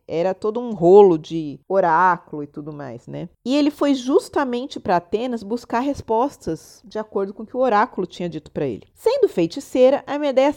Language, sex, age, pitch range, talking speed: Portuguese, female, 40-59, 200-290 Hz, 185 wpm